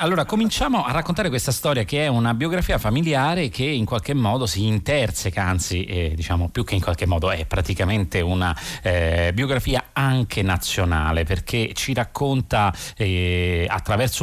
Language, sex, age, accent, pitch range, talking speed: Italian, male, 30-49, native, 90-125 Hz, 155 wpm